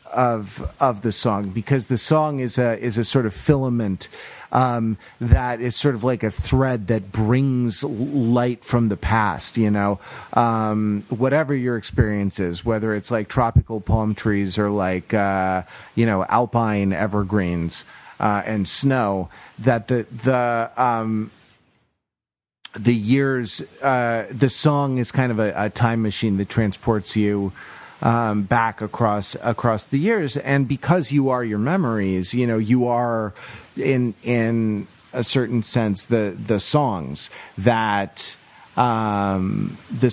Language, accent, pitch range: English, American, 105-125 Hz